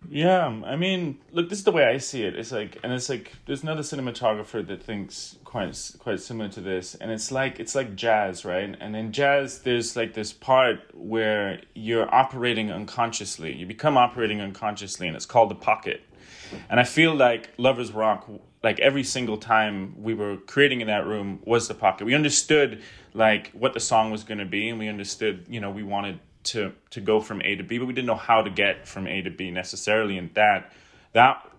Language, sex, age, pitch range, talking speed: English, male, 20-39, 100-125 Hz, 210 wpm